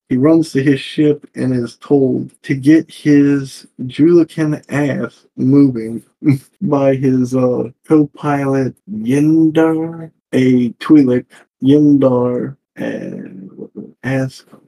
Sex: male